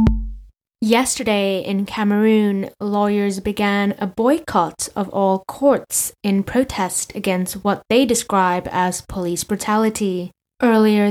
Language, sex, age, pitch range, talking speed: English, female, 10-29, 185-215 Hz, 110 wpm